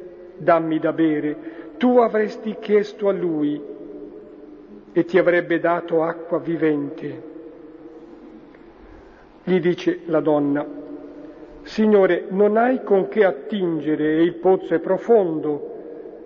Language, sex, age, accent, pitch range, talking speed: Italian, male, 50-69, native, 165-195 Hz, 105 wpm